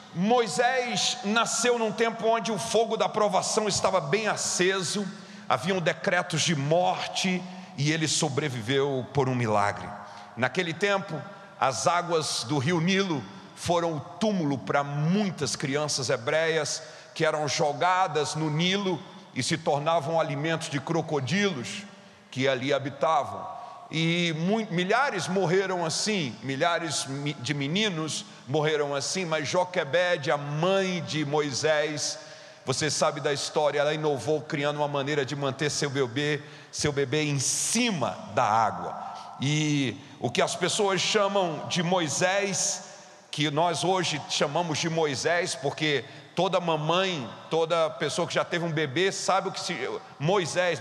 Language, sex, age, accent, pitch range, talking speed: Portuguese, male, 50-69, Brazilian, 150-195 Hz, 135 wpm